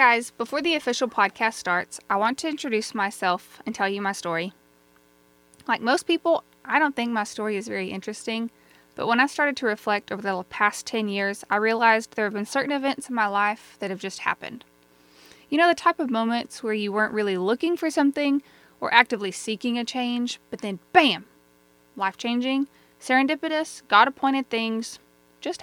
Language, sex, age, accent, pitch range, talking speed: English, female, 20-39, American, 175-255 Hz, 185 wpm